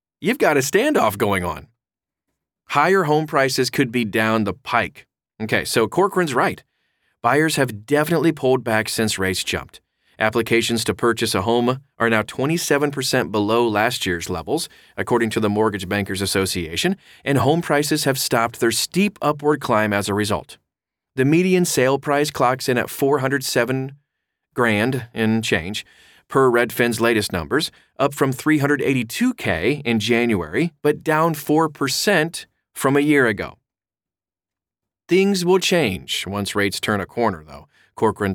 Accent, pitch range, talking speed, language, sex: American, 105-140 Hz, 145 wpm, English, male